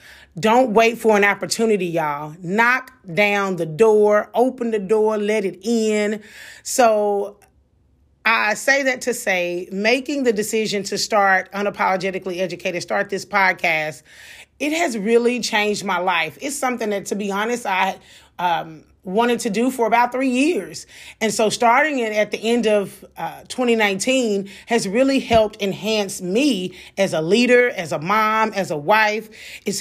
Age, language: 30-49, English